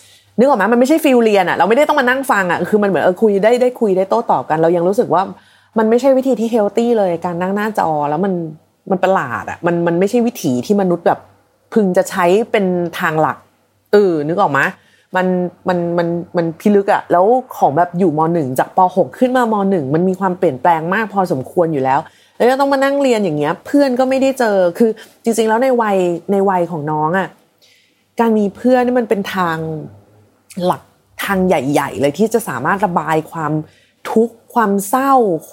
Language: Thai